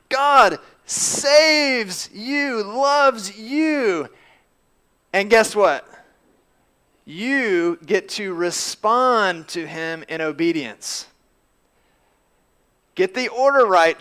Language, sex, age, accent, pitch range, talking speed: English, male, 30-49, American, 175-235 Hz, 85 wpm